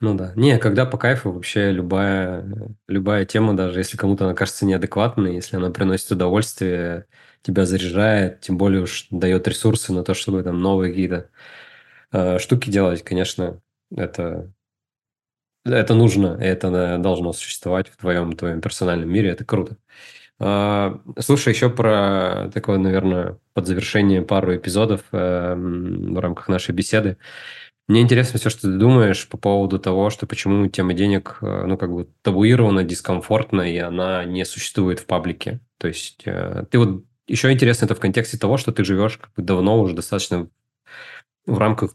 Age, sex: 20-39, male